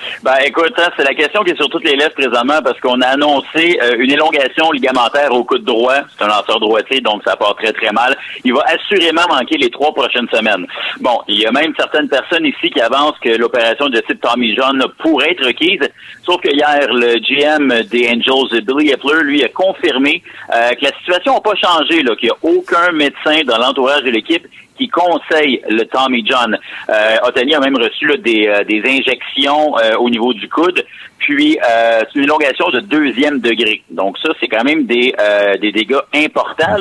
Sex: male